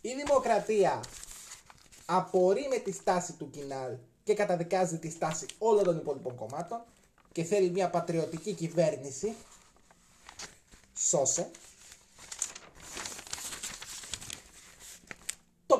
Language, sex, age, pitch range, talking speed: Greek, male, 30-49, 140-195 Hz, 85 wpm